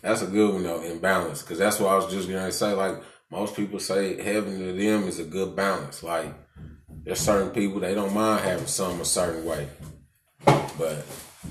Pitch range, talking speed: 90-105 Hz, 200 wpm